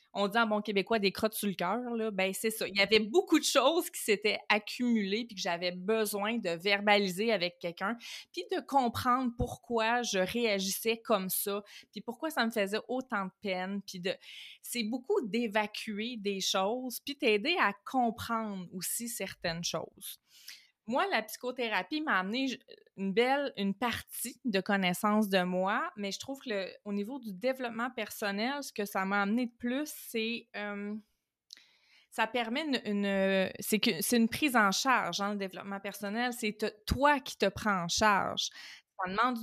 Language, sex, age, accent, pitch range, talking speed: French, female, 30-49, Canadian, 195-240 Hz, 165 wpm